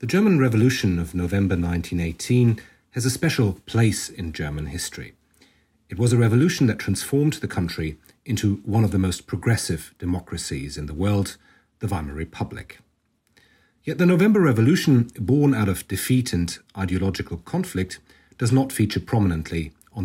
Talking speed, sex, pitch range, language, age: 150 wpm, male, 90-125 Hz, English, 40-59